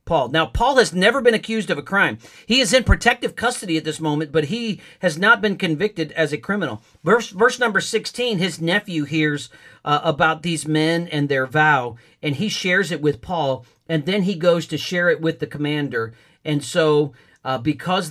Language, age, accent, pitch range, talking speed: English, 50-69, American, 135-170 Hz, 200 wpm